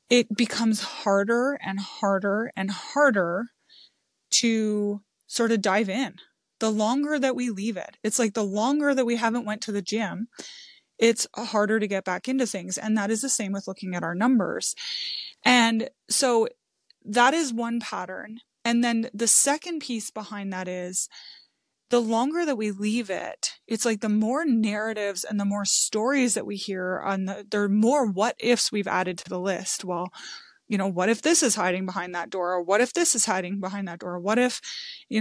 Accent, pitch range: American, 195-245 Hz